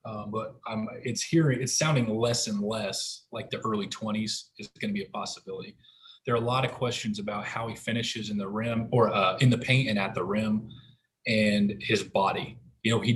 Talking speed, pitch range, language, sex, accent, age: 220 wpm, 110-125 Hz, English, male, American, 20-39